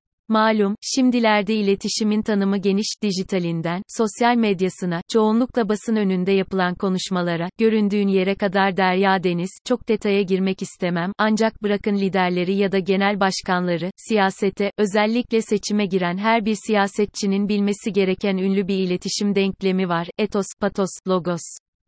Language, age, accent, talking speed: Turkish, 30-49, native, 125 wpm